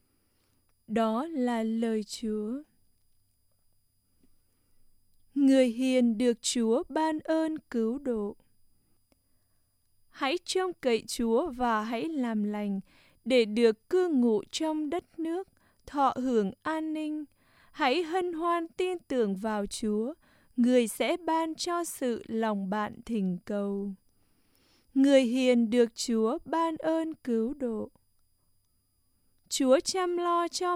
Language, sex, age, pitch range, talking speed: English, female, 20-39, 210-300 Hz, 115 wpm